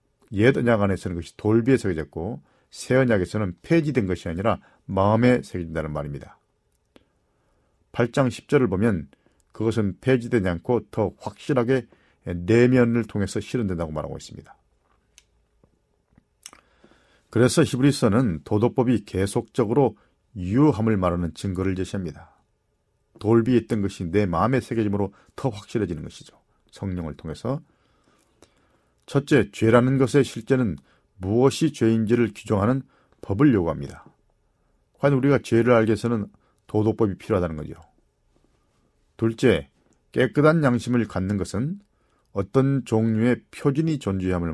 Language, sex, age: Korean, male, 40-59